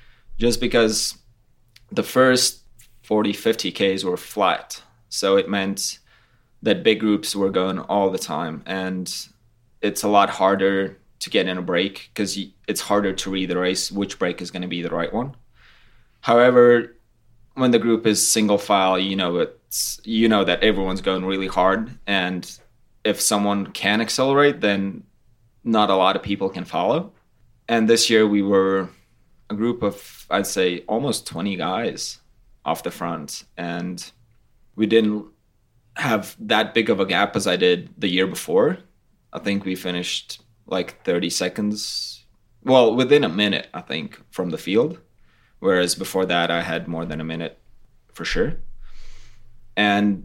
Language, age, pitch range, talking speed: English, 20-39, 95-115 Hz, 160 wpm